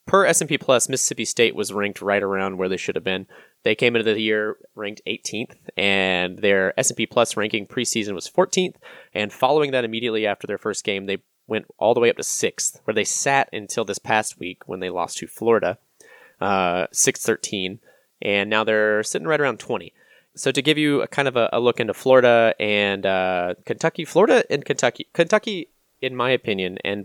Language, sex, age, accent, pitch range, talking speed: English, male, 20-39, American, 100-125 Hz, 200 wpm